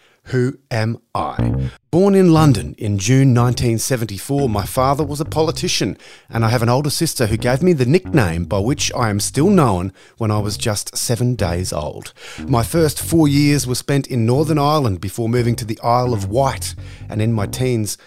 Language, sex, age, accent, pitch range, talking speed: English, male, 30-49, Australian, 105-140 Hz, 195 wpm